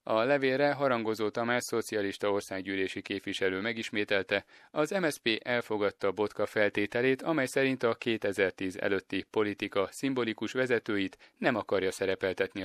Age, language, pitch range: 30-49, Hungarian, 100-120 Hz